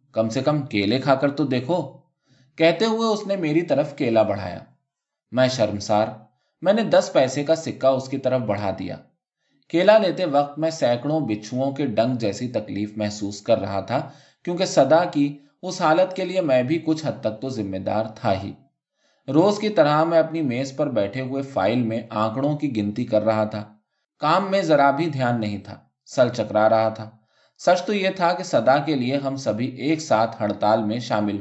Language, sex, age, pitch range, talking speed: Urdu, male, 20-39, 110-155 Hz, 195 wpm